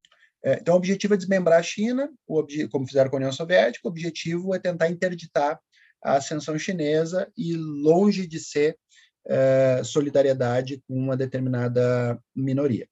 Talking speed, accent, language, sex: 145 wpm, Brazilian, Portuguese, male